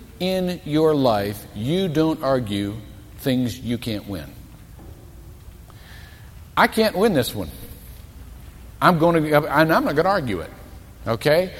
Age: 50-69